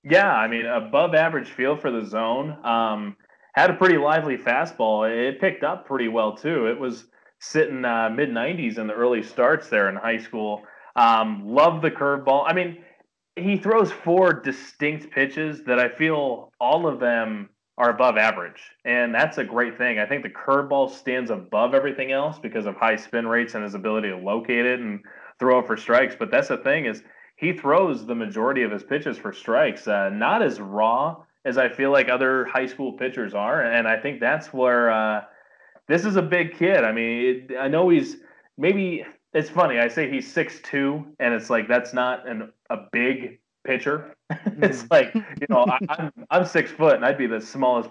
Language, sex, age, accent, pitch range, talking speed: English, male, 20-39, American, 115-155 Hz, 195 wpm